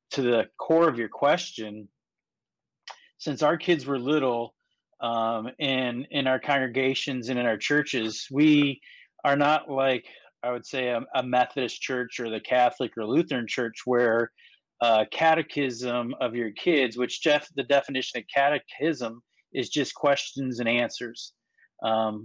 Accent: American